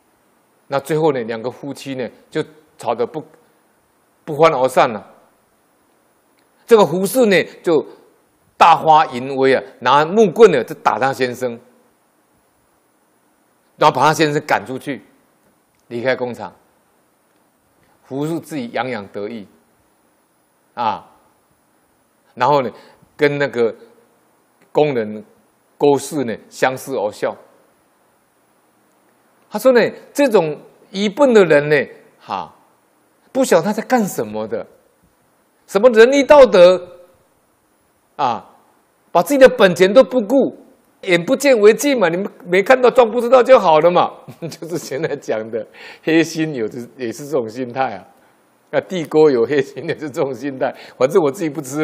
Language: Chinese